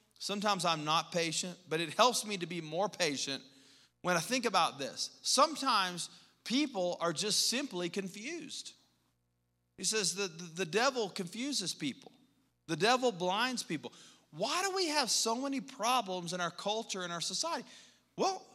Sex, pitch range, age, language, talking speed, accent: male, 170-250 Hz, 40-59, English, 155 wpm, American